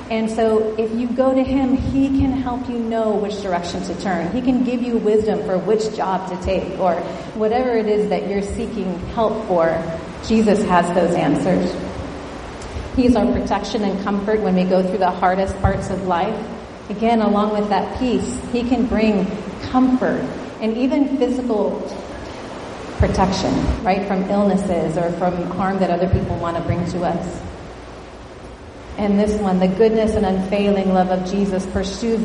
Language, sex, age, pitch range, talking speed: English, female, 30-49, 185-220 Hz, 170 wpm